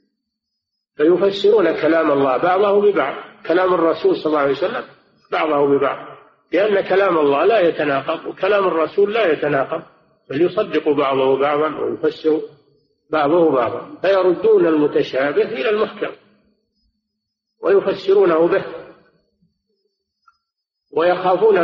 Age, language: 50-69, Arabic